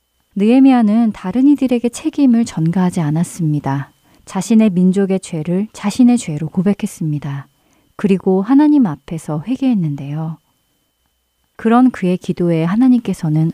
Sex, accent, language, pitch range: female, native, Korean, 155-220 Hz